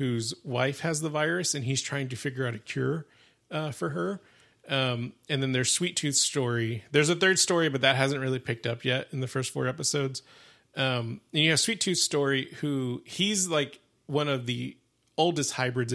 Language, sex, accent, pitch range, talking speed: English, male, American, 120-140 Hz, 205 wpm